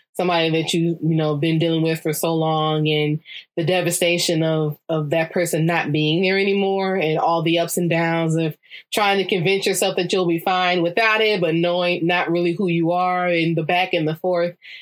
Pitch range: 160-185 Hz